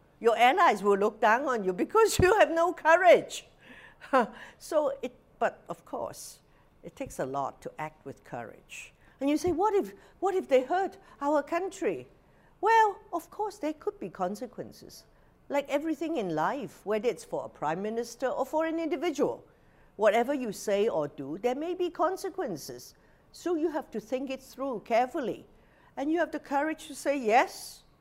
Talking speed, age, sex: 175 wpm, 50-69, female